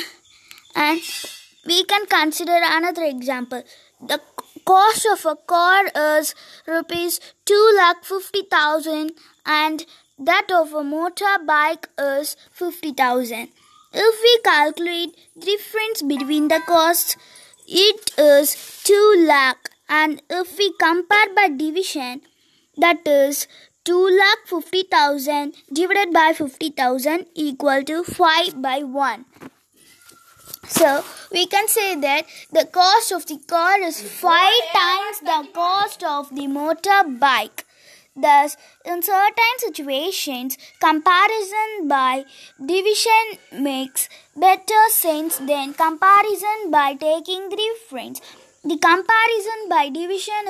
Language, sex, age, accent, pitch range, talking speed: Tamil, female, 20-39, native, 300-390 Hz, 105 wpm